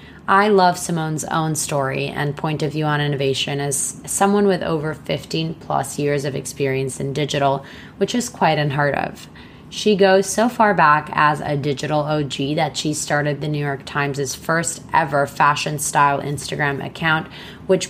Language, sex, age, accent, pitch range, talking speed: English, female, 20-39, American, 140-175 Hz, 170 wpm